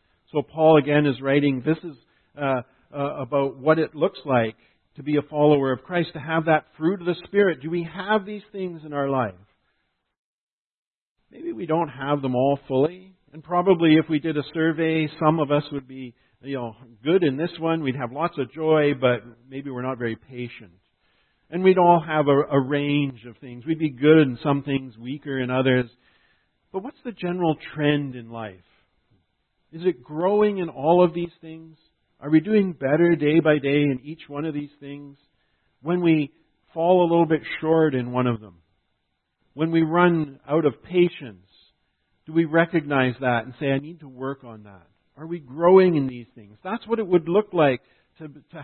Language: English